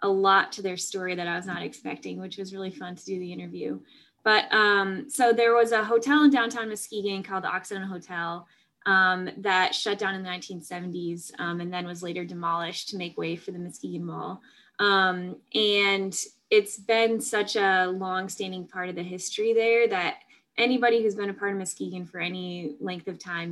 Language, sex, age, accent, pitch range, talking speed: English, female, 20-39, American, 185-225 Hz, 200 wpm